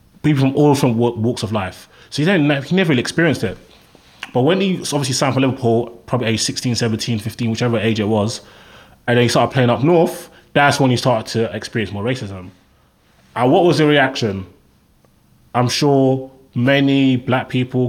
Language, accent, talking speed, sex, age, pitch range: English, British, 190 wpm, male, 20-39, 115-135 Hz